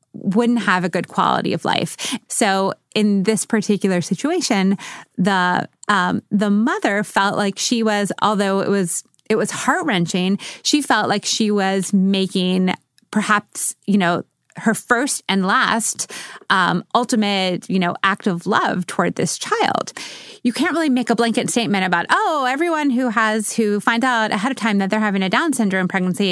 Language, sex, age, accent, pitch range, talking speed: English, female, 30-49, American, 185-235 Hz, 170 wpm